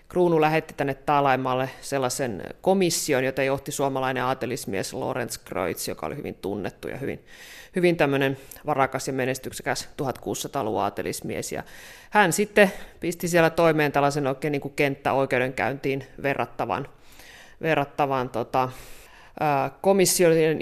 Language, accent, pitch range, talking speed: Finnish, native, 130-165 Hz, 100 wpm